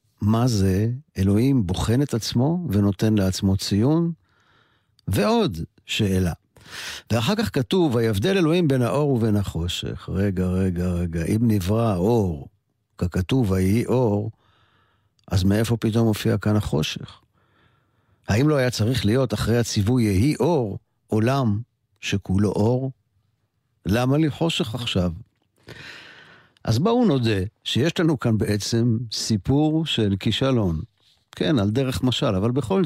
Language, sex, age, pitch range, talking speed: Hebrew, male, 50-69, 100-130 Hz, 120 wpm